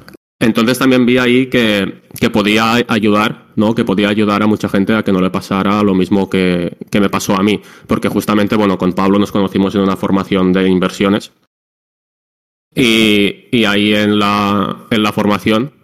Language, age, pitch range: Spanish, 20-39, 95-105 Hz